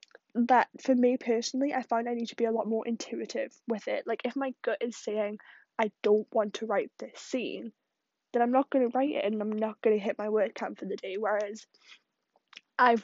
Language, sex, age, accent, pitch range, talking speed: English, female, 10-29, British, 220-265 Hz, 230 wpm